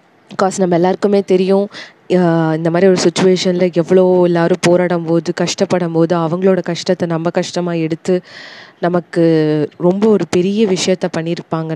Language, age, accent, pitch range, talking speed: Tamil, 20-39, native, 165-190 Hz, 130 wpm